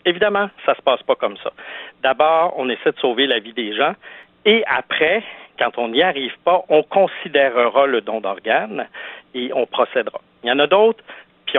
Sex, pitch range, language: male, 120-170 Hz, French